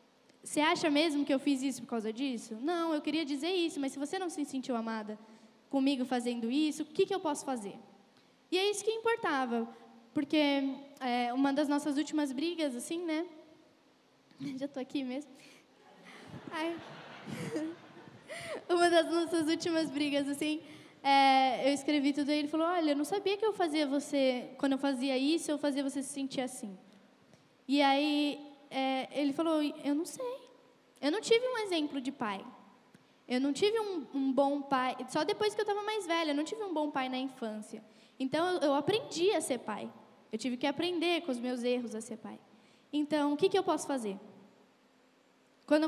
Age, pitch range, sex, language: 10-29, 255-320 Hz, female, Portuguese